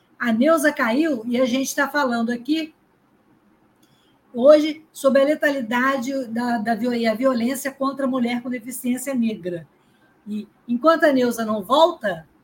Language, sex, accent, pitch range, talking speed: Portuguese, female, Brazilian, 235-280 Hz, 135 wpm